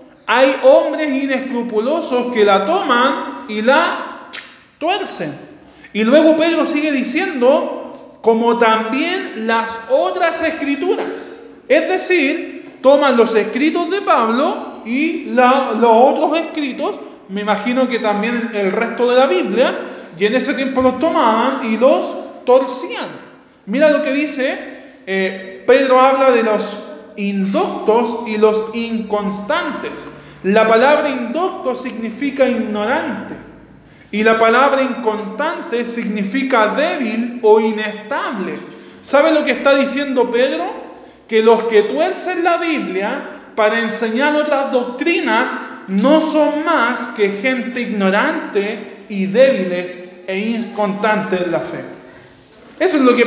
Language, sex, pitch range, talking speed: Spanish, male, 220-295 Hz, 120 wpm